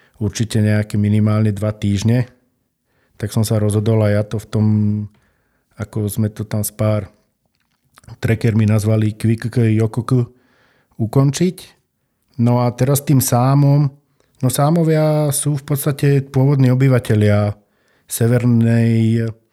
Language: Slovak